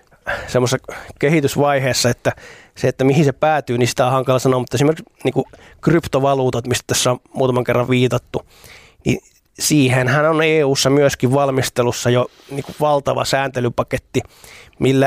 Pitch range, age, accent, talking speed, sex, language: 125-140 Hz, 20-39, native, 135 wpm, male, Finnish